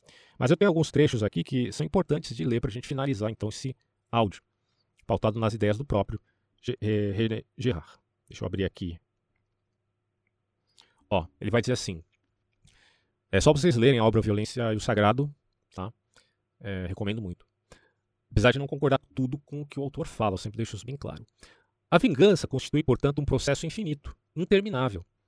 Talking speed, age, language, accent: 175 wpm, 40-59, Portuguese, Brazilian